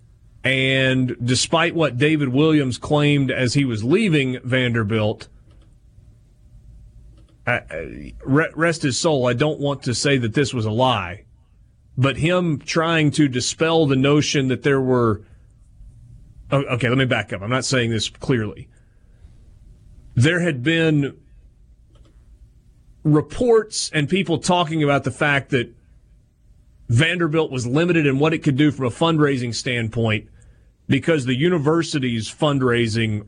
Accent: American